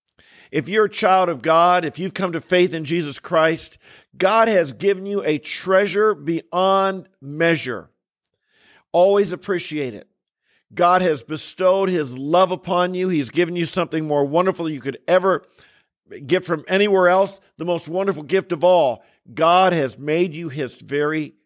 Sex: male